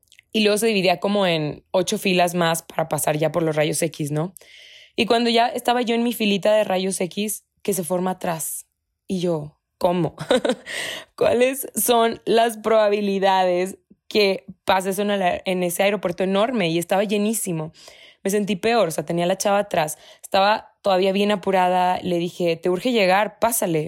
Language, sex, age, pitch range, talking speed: Spanish, female, 20-39, 165-210 Hz, 175 wpm